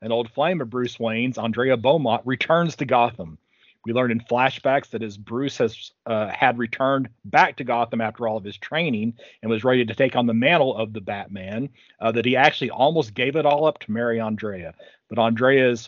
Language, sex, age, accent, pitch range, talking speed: English, male, 40-59, American, 115-135 Hz, 210 wpm